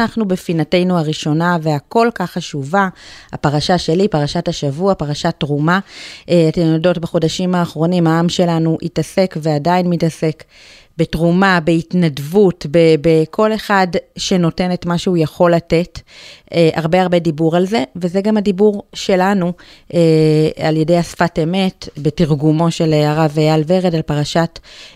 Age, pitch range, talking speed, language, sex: 30-49, 160-195 Hz, 125 wpm, Hebrew, female